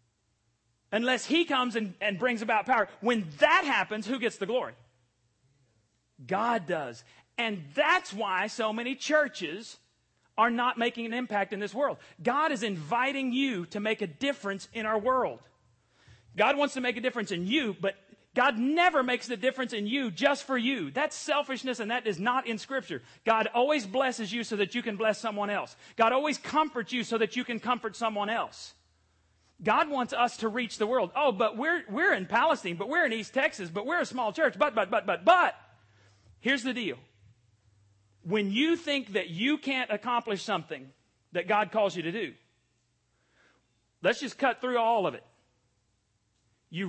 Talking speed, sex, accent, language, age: 185 wpm, male, American, English, 40-59